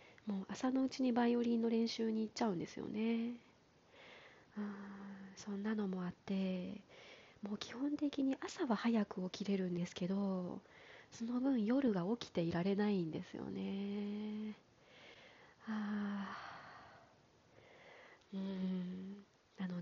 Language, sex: Japanese, female